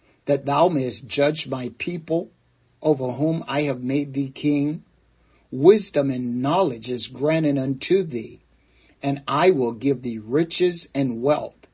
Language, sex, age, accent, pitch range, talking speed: English, male, 60-79, American, 115-150 Hz, 145 wpm